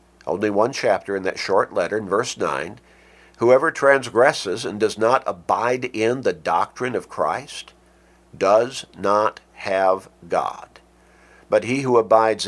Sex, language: male, English